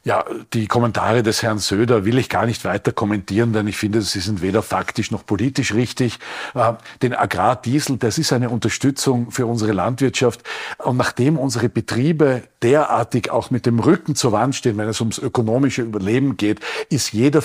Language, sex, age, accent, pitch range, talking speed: German, male, 50-69, Austrian, 110-130 Hz, 175 wpm